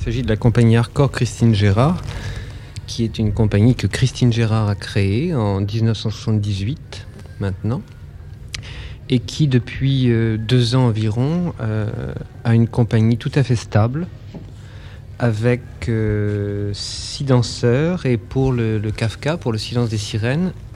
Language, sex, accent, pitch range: French, male, French, 110-125 Hz